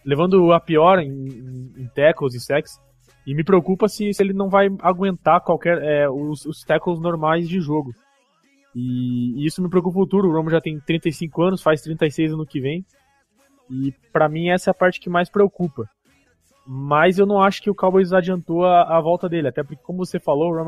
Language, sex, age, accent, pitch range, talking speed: Portuguese, male, 20-39, Brazilian, 140-170 Hz, 210 wpm